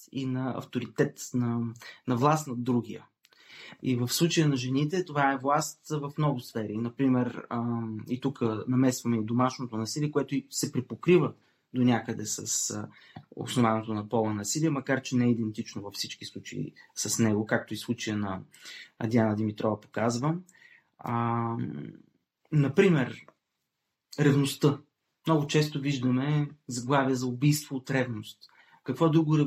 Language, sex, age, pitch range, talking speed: Bulgarian, male, 20-39, 120-145 Hz, 140 wpm